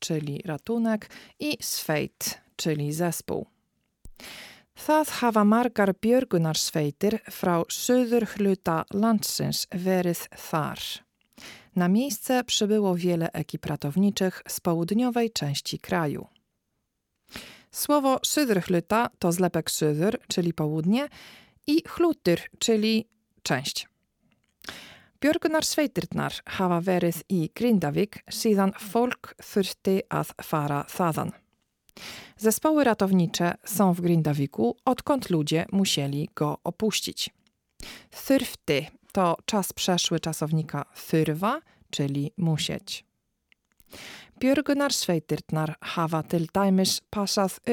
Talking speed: 85 wpm